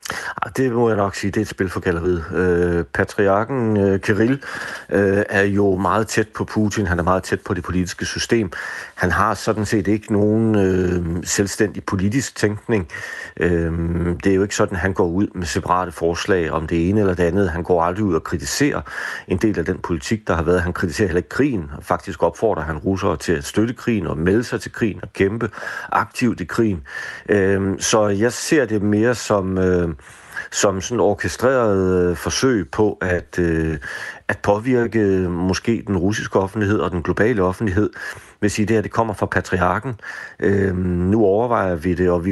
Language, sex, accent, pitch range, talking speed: Danish, male, native, 90-105 Hz, 180 wpm